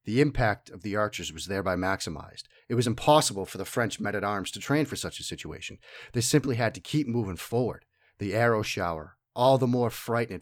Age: 40-59